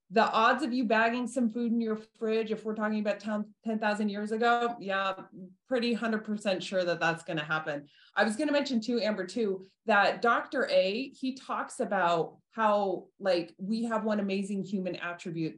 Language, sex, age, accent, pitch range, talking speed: English, female, 30-49, American, 175-225 Hz, 175 wpm